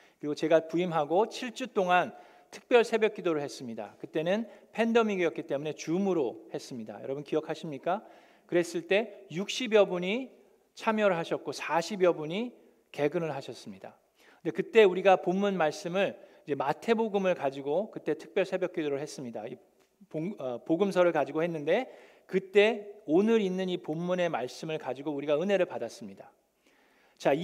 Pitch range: 160-205 Hz